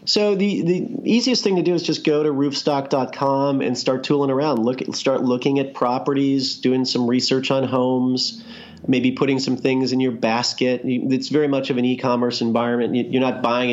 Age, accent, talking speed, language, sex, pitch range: 40-59, American, 190 wpm, English, male, 115-145 Hz